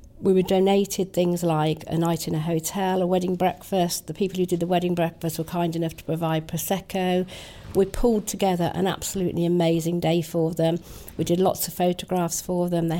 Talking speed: 200 wpm